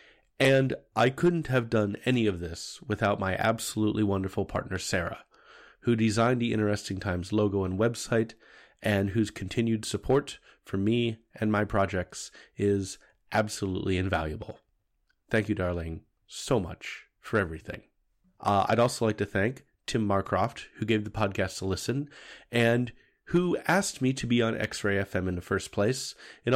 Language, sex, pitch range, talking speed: English, male, 100-120 Hz, 155 wpm